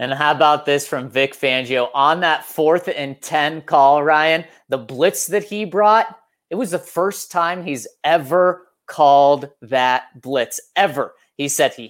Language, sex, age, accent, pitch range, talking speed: English, male, 30-49, American, 135-225 Hz, 165 wpm